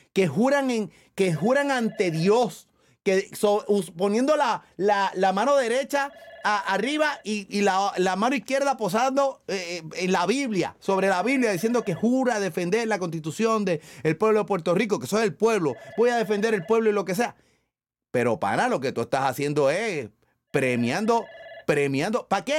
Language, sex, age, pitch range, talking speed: Spanish, male, 30-49, 175-240 Hz, 185 wpm